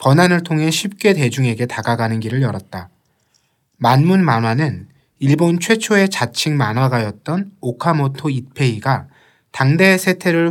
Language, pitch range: Korean, 125-180 Hz